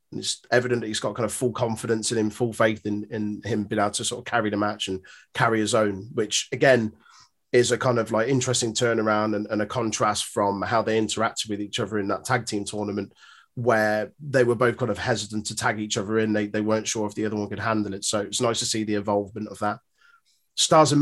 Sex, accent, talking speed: male, British, 250 wpm